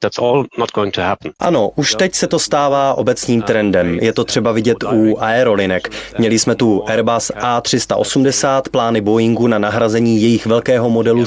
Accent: native